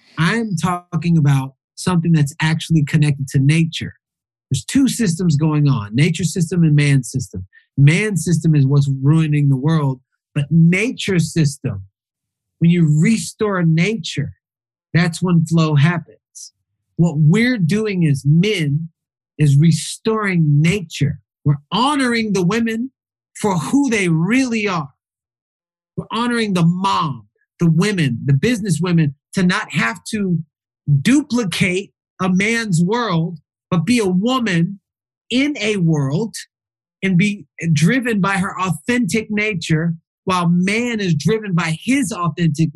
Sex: male